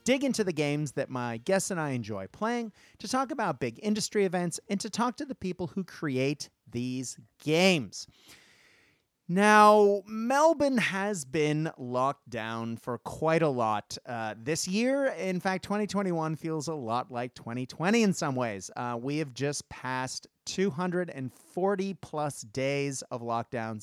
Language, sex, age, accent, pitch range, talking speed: English, male, 30-49, American, 125-200 Hz, 155 wpm